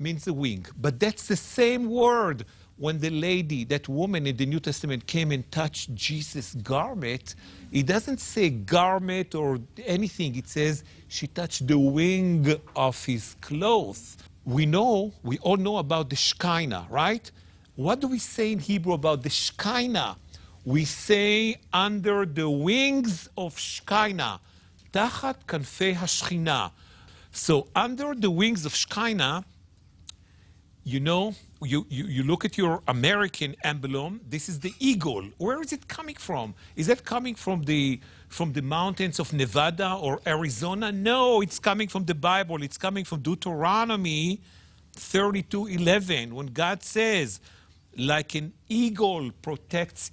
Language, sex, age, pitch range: English, male, 50-69, 135-195 Hz